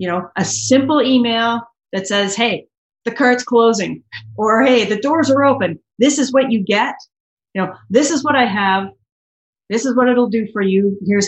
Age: 40-59